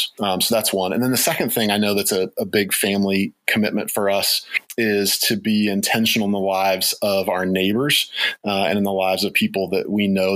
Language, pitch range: English, 95-105 Hz